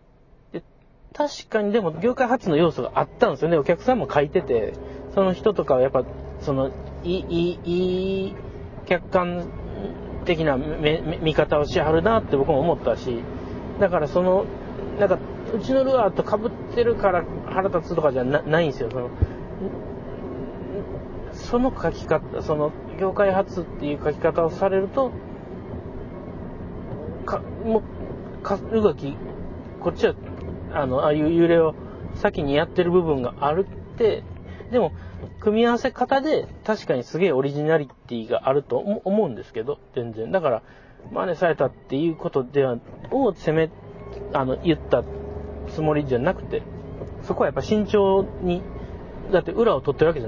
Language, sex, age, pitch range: Japanese, male, 40-59, 145-210 Hz